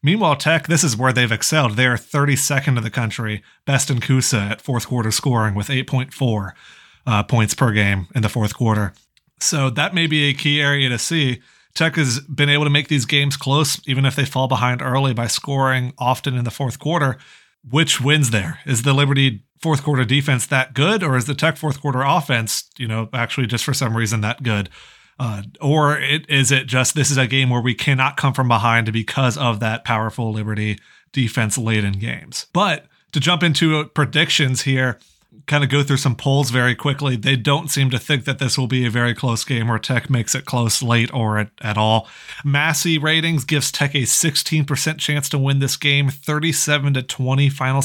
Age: 30-49